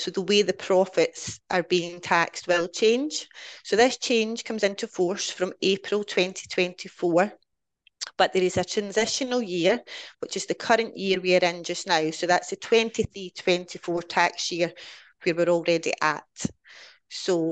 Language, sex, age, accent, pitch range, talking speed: English, female, 30-49, British, 175-205 Hz, 160 wpm